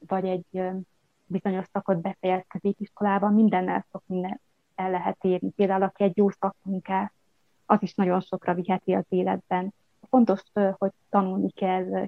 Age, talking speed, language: 20-39, 135 wpm, Hungarian